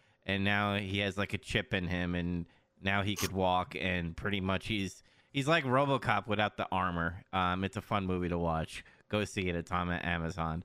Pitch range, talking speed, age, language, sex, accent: 95-145 Hz, 215 wpm, 30-49, English, male, American